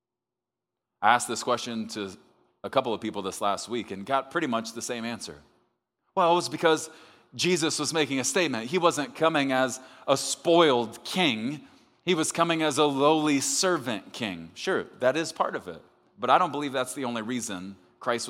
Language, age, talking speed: English, 30-49, 190 wpm